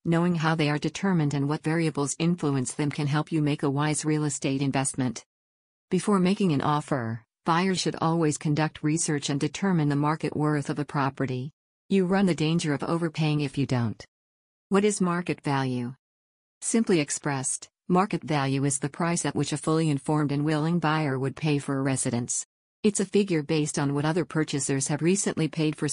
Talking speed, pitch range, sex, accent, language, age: 185 wpm, 140-165 Hz, female, American, English, 50-69